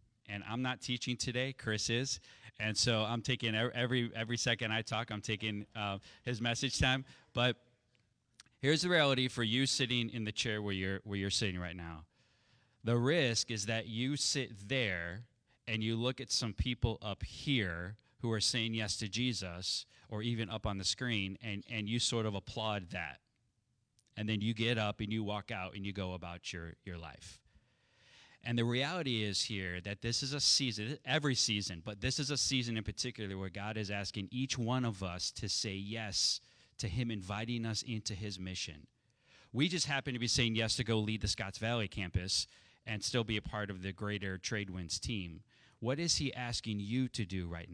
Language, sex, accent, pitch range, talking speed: English, male, American, 105-125 Hz, 200 wpm